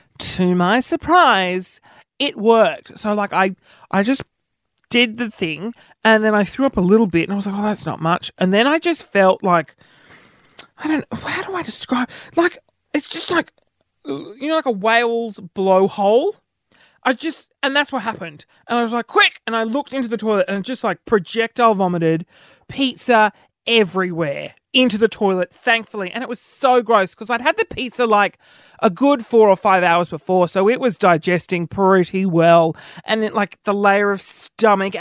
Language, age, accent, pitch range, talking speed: English, 30-49, Australian, 195-255 Hz, 190 wpm